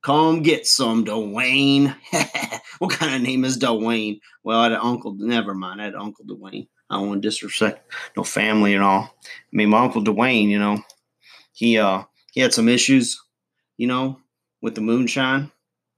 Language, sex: English, male